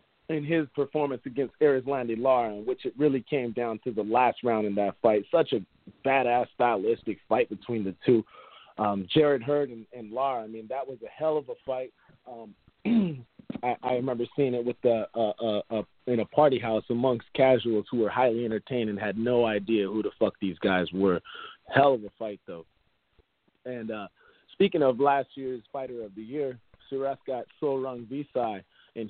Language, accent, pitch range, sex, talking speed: English, American, 110-140 Hz, male, 190 wpm